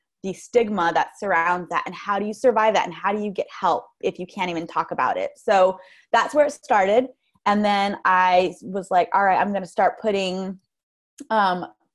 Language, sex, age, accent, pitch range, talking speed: English, female, 20-39, American, 185-230 Hz, 205 wpm